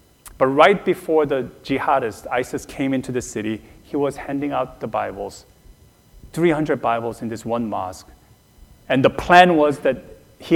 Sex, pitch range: male, 105-130 Hz